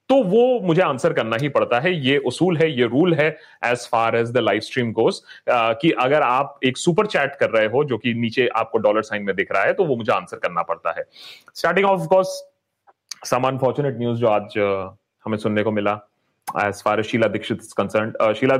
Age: 30-49